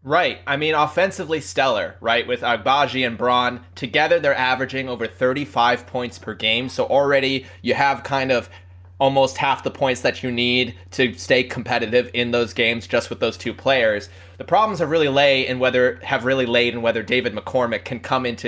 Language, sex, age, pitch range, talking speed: English, male, 20-39, 120-170 Hz, 190 wpm